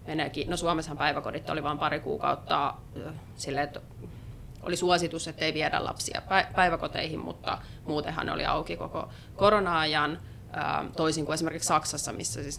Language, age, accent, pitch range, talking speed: Finnish, 30-49, native, 145-180 Hz, 140 wpm